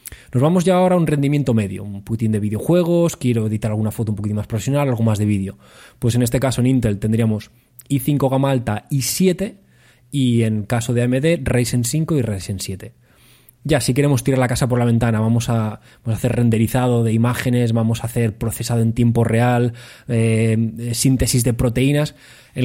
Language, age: Spanish, 20-39